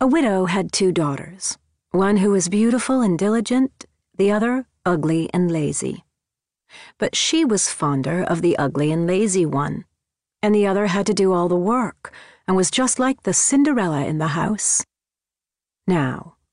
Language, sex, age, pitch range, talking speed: English, female, 40-59, 170-235 Hz, 165 wpm